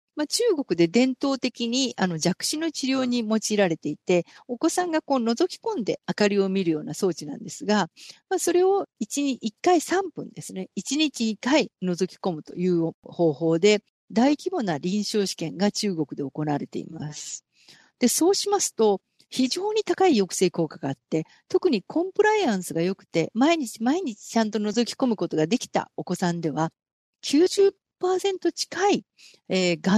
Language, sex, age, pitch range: Japanese, female, 50-69, 175-275 Hz